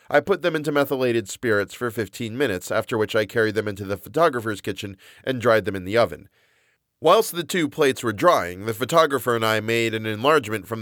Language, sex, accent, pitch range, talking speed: English, male, American, 100-135 Hz, 210 wpm